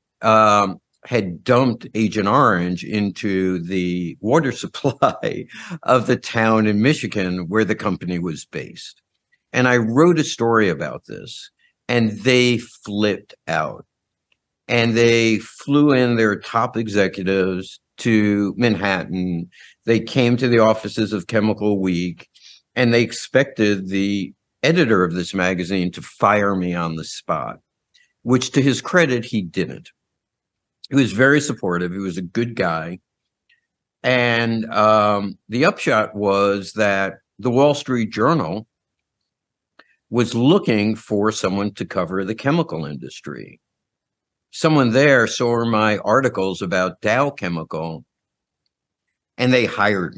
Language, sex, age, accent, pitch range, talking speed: English, male, 60-79, American, 95-120 Hz, 125 wpm